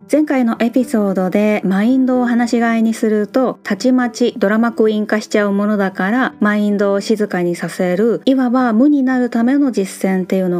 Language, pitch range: Japanese, 195-250 Hz